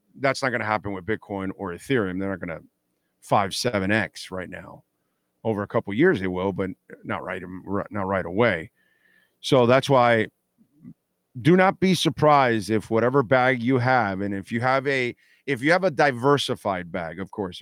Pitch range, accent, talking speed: 100-130 Hz, American, 190 wpm